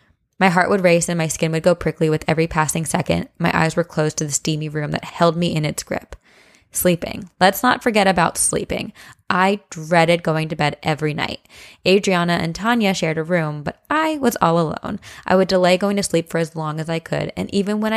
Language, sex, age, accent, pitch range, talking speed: English, female, 20-39, American, 160-185 Hz, 225 wpm